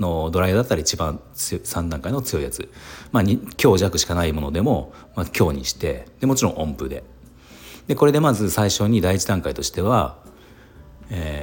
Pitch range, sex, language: 75-115 Hz, male, Japanese